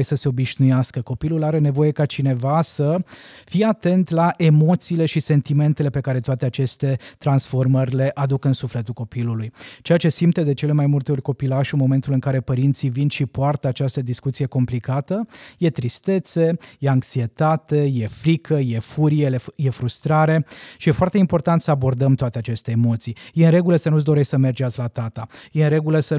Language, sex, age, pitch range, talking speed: Romanian, male, 20-39, 130-155 Hz, 175 wpm